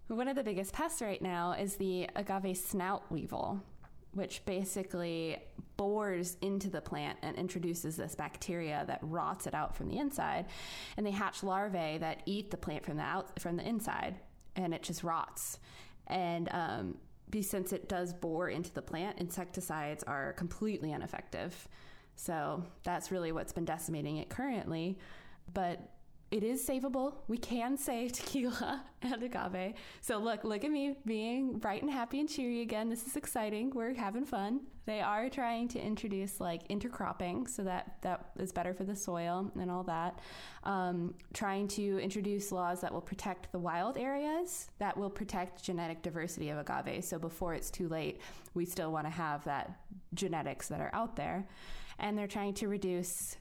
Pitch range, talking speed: 175-215 Hz, 170 wpm